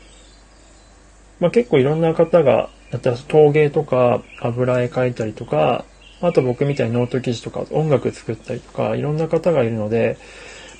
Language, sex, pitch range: Japanese, male, 115-165 Hz